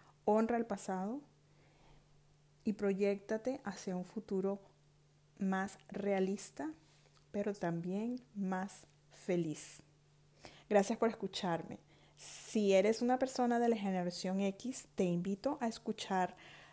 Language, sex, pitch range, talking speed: Spanish, female, 175-215 Hz, 105 wpm